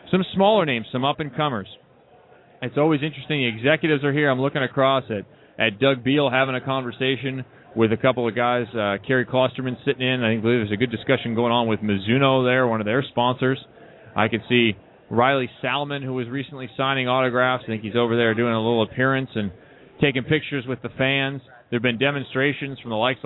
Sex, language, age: male, English, 30-49